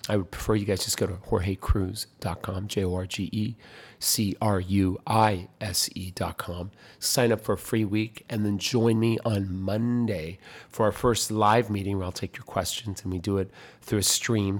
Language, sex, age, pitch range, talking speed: English, male, 40-59, 95-115 Hz, 200 wpm